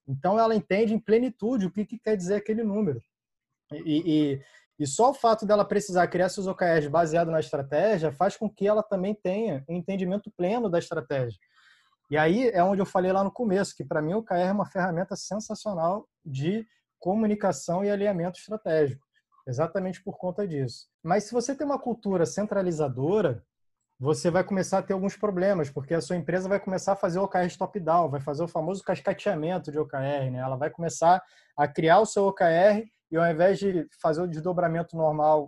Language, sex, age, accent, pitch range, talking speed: Portuguese, male, 20-39, Brazilian, 150-200 Hz, 190 wpm